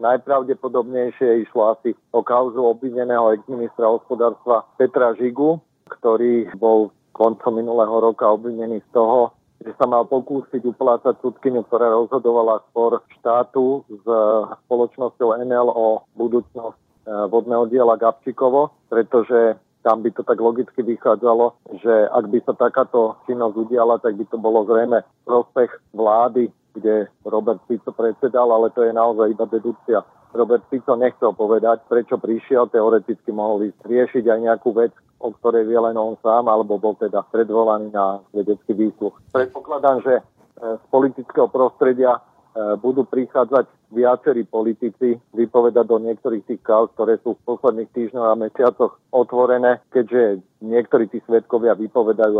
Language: Slovak